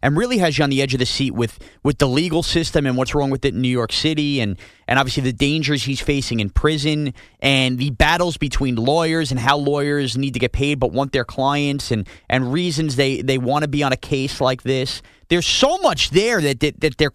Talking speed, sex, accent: 240 wpm, male, American